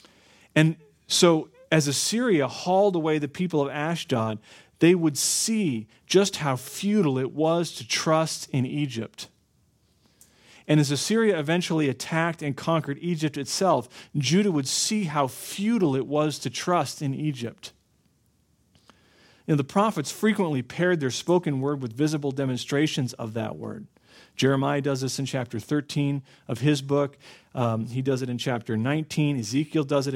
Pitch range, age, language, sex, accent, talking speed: 130-160 Hz, 40-59, English, male, American, 150 wpm